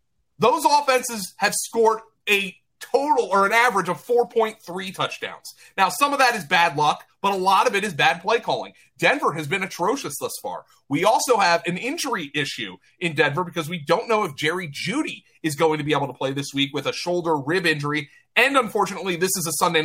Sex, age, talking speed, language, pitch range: male, 30-49, 210 wpm, English, 130-180 Hz